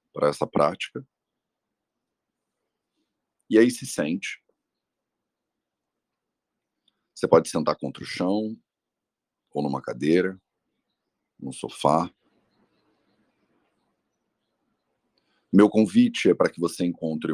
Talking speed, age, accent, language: 85 wpm, 40-59, Brazilian, English